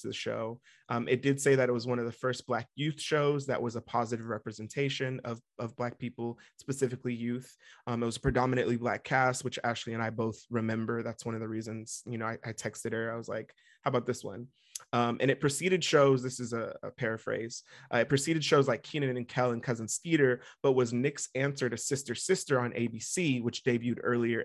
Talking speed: 225 wpm